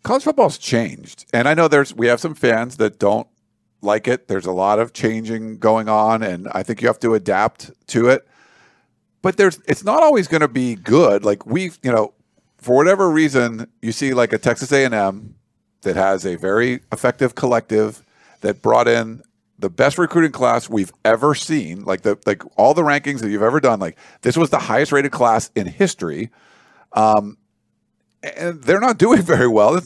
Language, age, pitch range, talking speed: English, 50-69, 110-145 Hz, 195 wpm